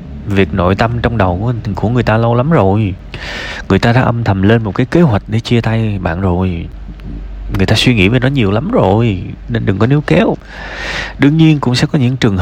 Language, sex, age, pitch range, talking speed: Vietnamese, male, 20-39, 95-125 Hz, 225 wpm